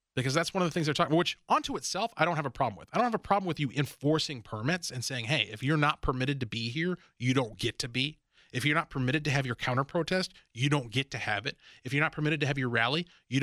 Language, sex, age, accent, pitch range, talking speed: English, male, 30-49, American, 140-190 Hz, 290 wpm